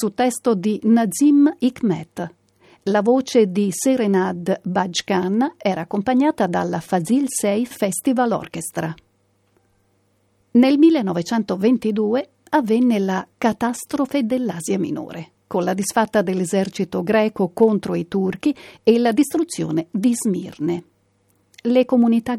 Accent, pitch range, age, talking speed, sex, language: native, 190-245 Hz, 50-69, 105 wpm, female, Italian